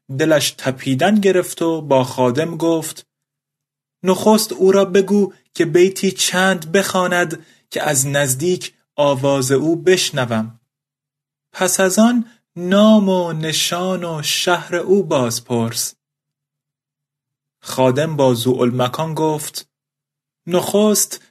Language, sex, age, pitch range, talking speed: Persian, male, 30-49, 140-175 Hz, 105 wpm